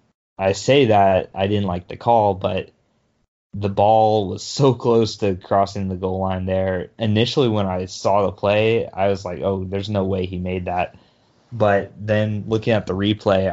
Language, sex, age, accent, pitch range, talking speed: English, male, 20-39, American, 95-110 Hz, 185 wpm